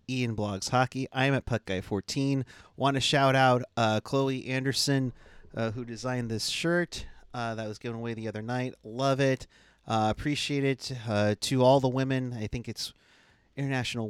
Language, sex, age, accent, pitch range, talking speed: English, male, 30-49, American, 105-135 Hz, 180 wpm